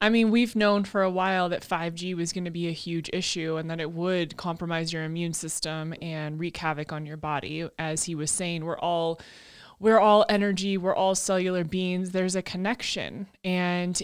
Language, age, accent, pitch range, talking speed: English, 20-39, American, 175-200 Hz, 200 wpm